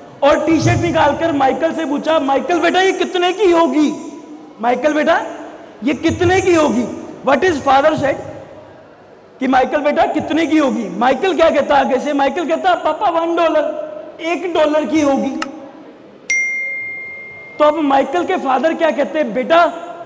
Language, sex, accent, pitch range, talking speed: Hindi, male, native, 270-320 Hz, 145 wpm